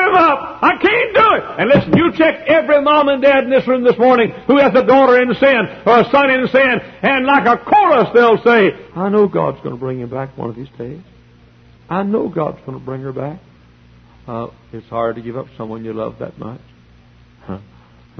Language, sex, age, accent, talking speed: English, male, 60-79, American, 220 wpm